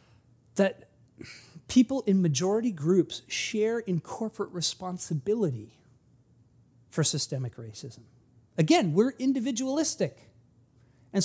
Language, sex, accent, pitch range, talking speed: English, male, American, 145-245 Hz, 85 wpm